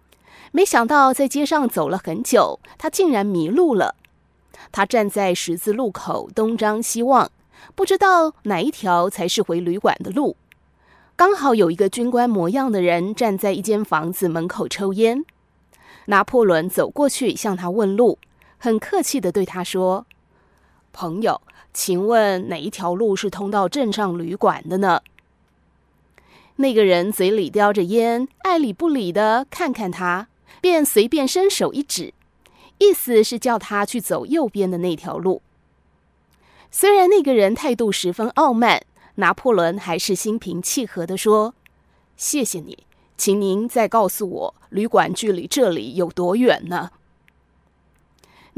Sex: female